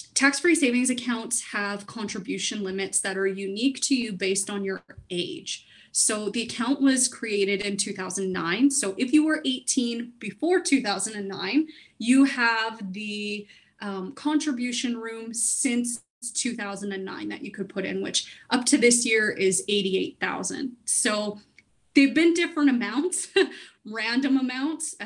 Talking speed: 135 wpm